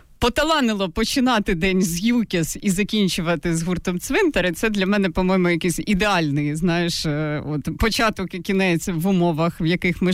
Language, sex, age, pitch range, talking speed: Ukrainian, female, 30-49, 160-205 Hz, 155 wpm